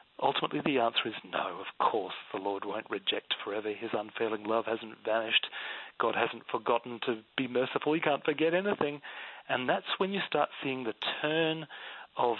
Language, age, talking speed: English, 40-59, 175 wpm